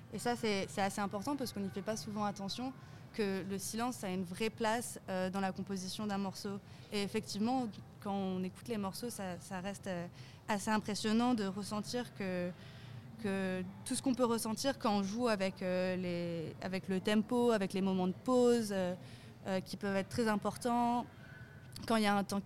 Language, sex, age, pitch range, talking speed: French, female, 20-39, 185-225 Hz, 190 wpm